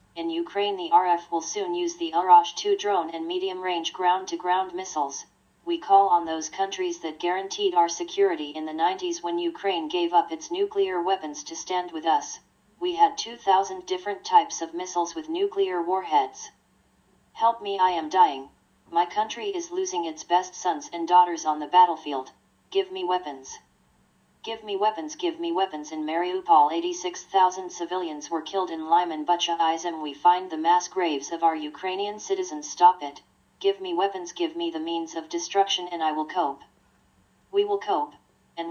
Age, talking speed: 40-59, 170 wpm